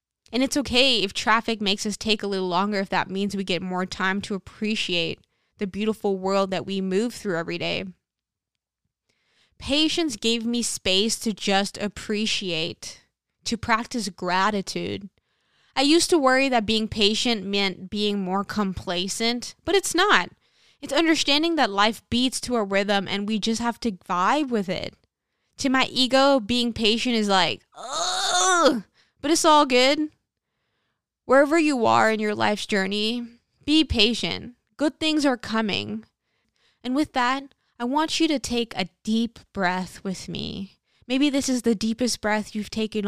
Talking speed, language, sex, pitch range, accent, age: 160 wpm, English, female, 190-245 Hz, American, 20-39